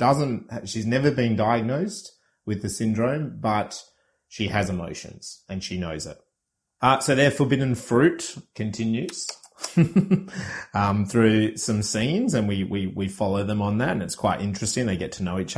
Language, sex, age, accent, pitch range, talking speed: English, male, 30-49, Australian, 100-130 Hz, 165 wpm